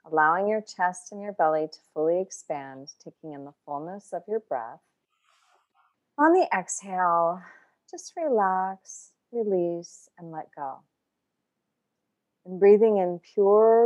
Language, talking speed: English, 125 wpm